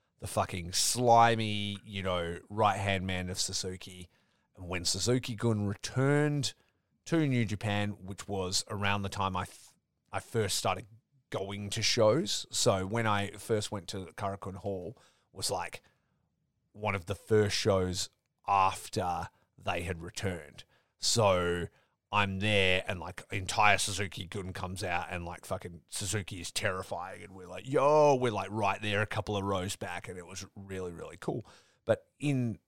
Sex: male